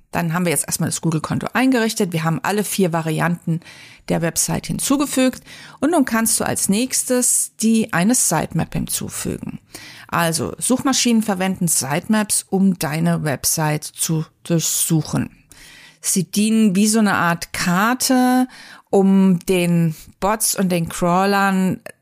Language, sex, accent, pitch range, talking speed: German, female, German, 165-210 Hz, 130 wpm